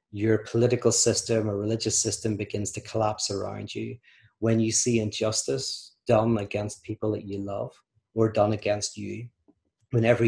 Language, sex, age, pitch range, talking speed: English, male, 30-49, 105-115 Hz, 150 wpm